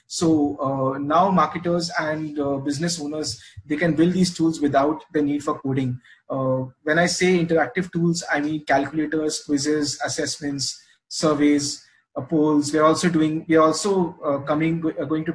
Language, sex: English, male